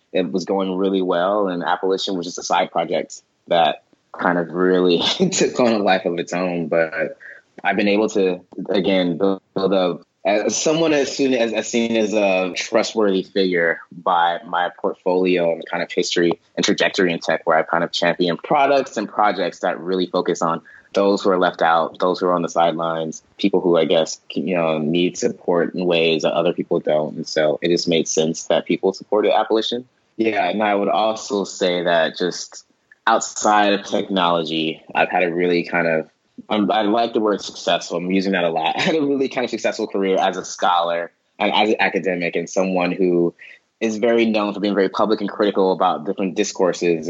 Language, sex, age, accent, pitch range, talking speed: English, male, 20-39, American, 85-105 Hz, 200 wpm